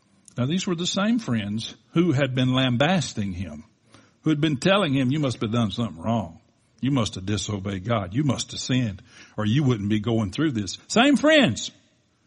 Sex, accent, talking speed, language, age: male, American, 195 wpm, English, 60-79